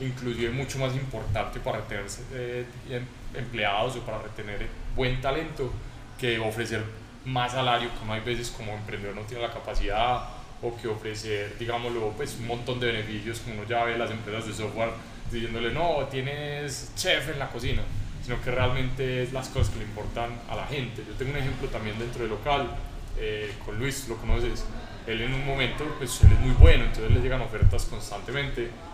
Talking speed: 185 wpm